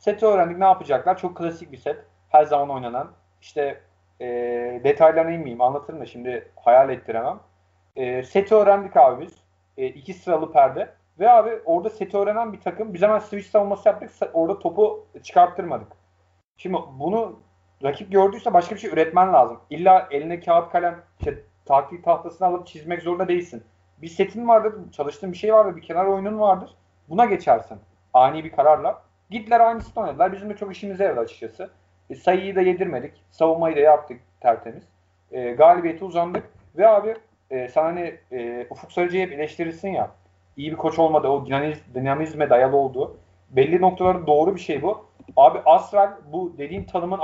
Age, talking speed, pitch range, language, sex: 40-59, 165 wpm, 135-195 Hz, Turkish, male